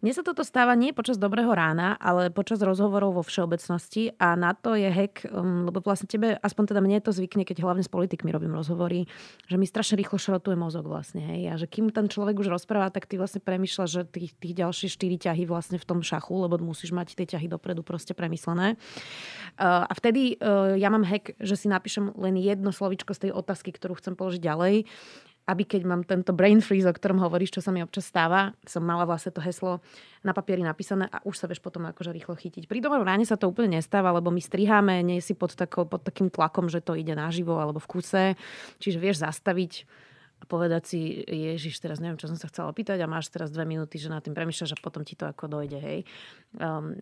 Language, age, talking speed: Slovak, 20-39, 220 wpm